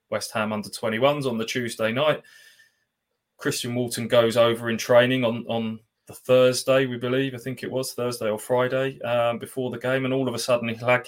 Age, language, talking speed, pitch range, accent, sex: 20-39, English, 195 wpm, 110-125 Hz, British, male